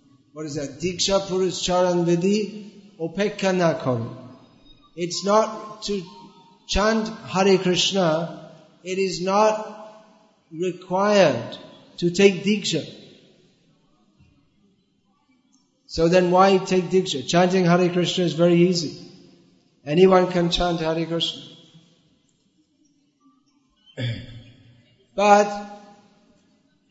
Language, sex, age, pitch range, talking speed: English, male, 50-69, 155-195 Hz, 85 wpm